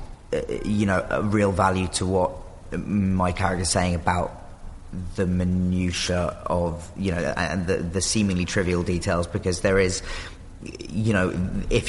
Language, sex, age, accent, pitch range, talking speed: English, male, 30-49, British, 90-105 Hz, 150 wpm